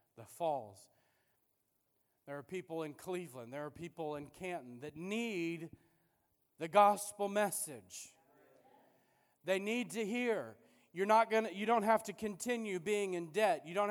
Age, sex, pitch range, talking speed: 40-59, male, 135-215 Hz, 145 wpm